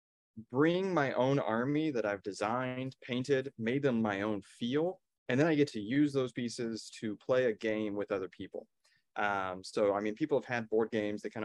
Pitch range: 105-130 Hz